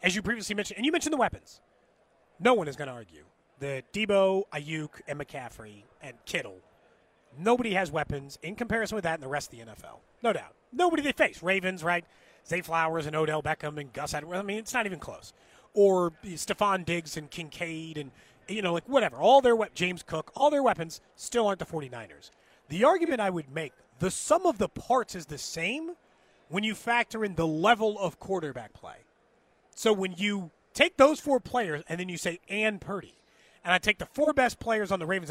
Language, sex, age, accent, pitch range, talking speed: English, male, 30-49, American, 160-215 Hz, 210 wpm